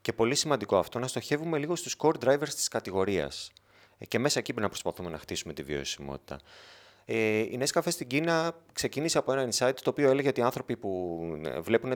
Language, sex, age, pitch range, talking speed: Greek, male, 30-49, 95-120 Hz, 200 wpm